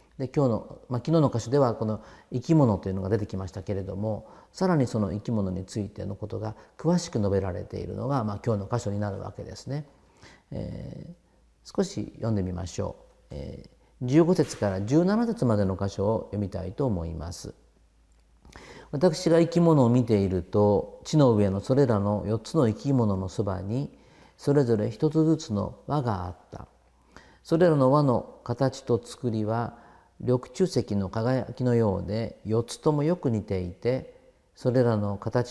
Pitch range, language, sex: 100-140 Hz, Japanese, male